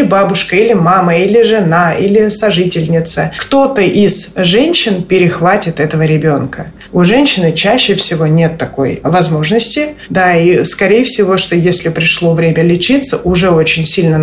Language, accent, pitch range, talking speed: Russian, native, 155-195 Hz, 135 wpm